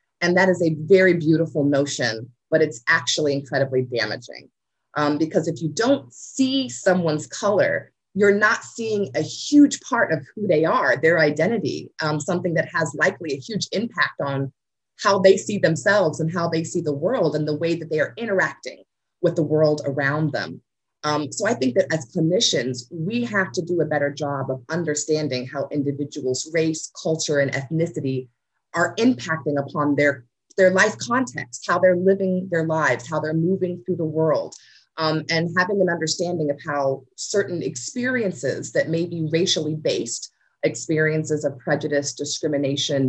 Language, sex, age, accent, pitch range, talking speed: English, female, 30-49, American, 145-175 Hz, 170 wpm